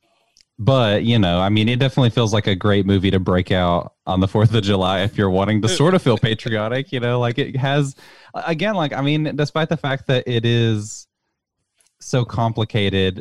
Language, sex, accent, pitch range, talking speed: English, male, American, 95-125 Hz, 205 wpm